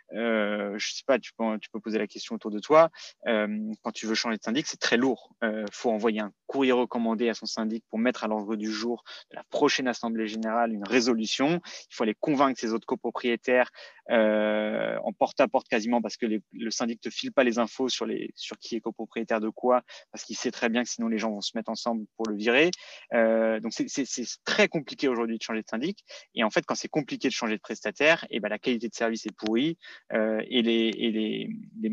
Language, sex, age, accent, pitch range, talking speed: French, male, 20-39, French, 110-130 Hz, 240 wpm